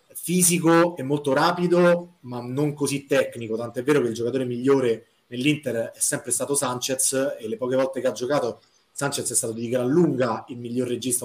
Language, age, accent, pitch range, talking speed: Italian, 30-49, native, 125-150 Hz, 185 wpm